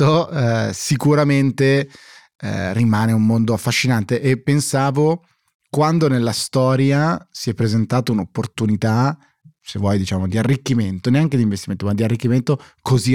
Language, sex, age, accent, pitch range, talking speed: Italian, male, 20-39, native, 110-135 Hz, 130 wpm